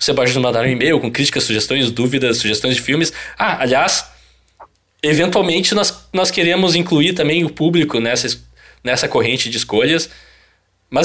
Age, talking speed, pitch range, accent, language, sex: 20-39, 150 wpm, 135-185 Hz, Brazilian, Portuguese, male